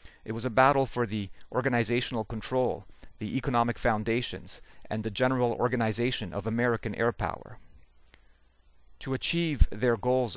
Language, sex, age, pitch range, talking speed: English, male, 40-59, 95-125 Hz, 135 wpm